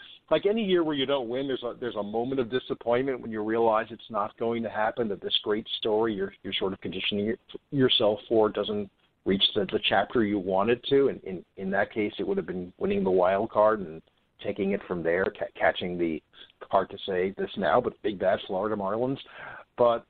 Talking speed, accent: 220 wpm, American